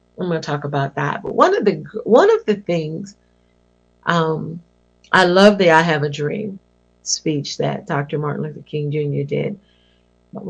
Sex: female